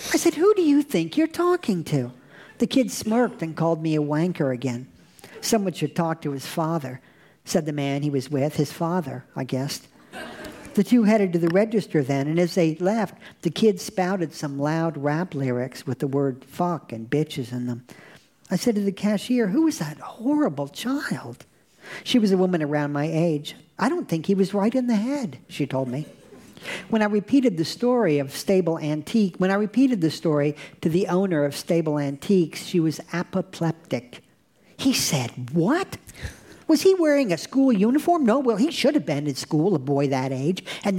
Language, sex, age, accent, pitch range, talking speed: English, male, 50-69, American, 145-215 Hz, 195 wpm